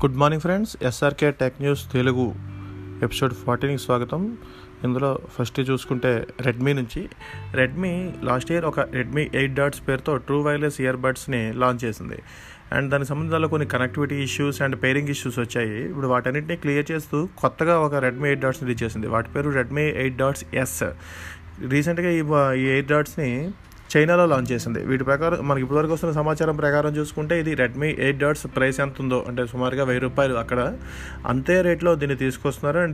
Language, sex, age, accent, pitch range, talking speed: Telugu, male, 30-49, native, 125-150 Hz, 160 wpm